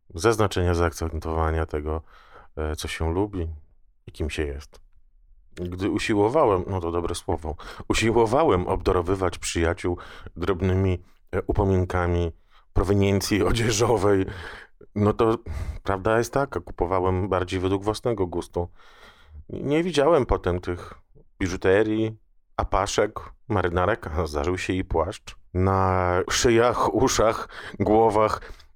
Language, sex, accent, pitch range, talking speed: Polish, male, native, 80-100 Hz, 105 wpm